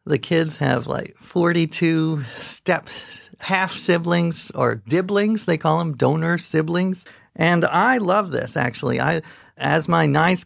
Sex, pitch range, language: male, 145-185 Hz, English